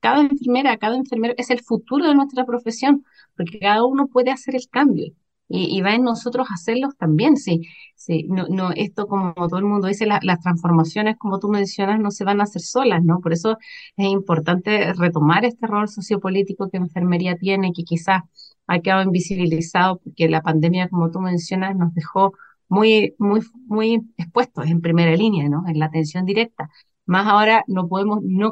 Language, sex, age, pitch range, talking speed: Spanish, female, 30-49, 170-205 Hz, 185 wpm